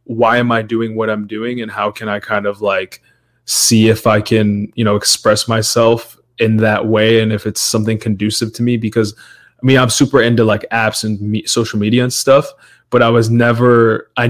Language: English